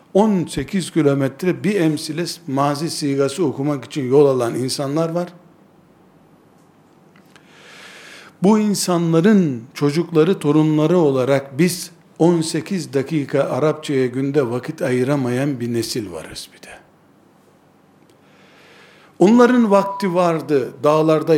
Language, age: Turkish, 60-79